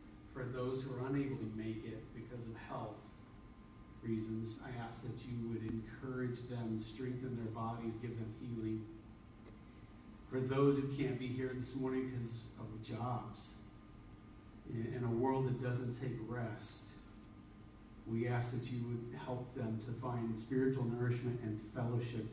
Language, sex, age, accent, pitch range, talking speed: English, male, 40-59, American, 105-120 Hz, 150 wpm